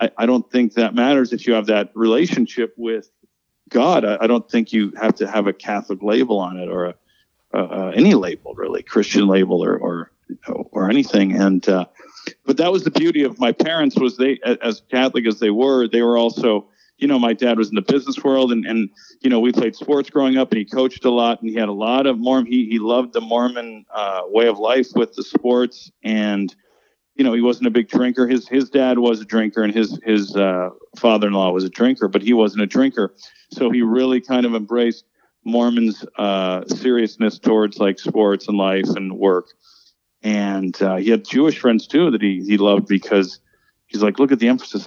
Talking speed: 220 wpm